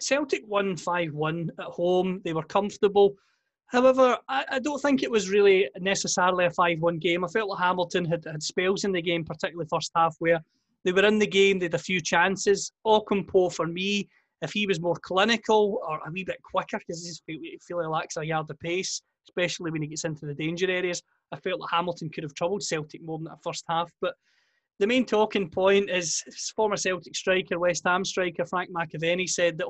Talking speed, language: 215 wpm, English